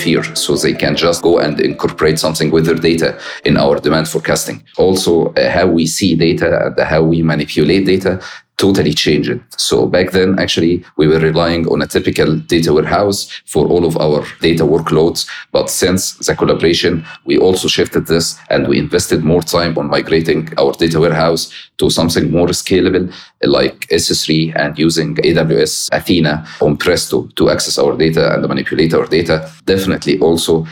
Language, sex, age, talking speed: English, male, 40-59, 165 wpm